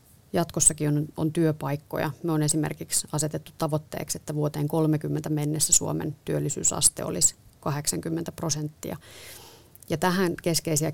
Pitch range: 150-175 Hz